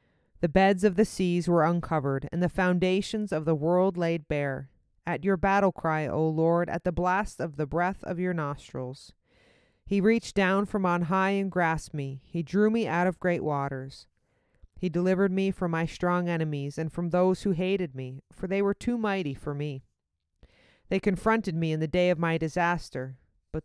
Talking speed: 195 wpm